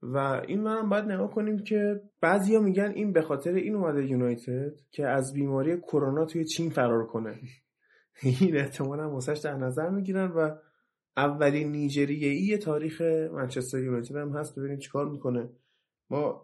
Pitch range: 125-155 Hz